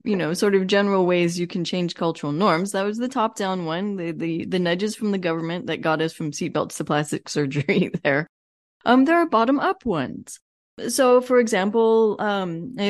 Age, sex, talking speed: 20-39, female, 185 wpm